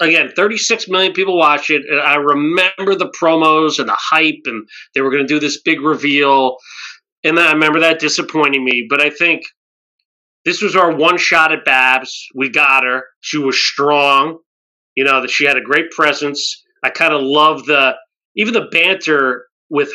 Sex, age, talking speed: male, 30-49, 185 wpm